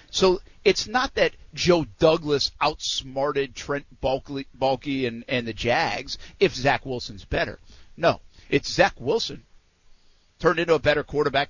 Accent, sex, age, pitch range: American, male, 50-69, 135-180 Hz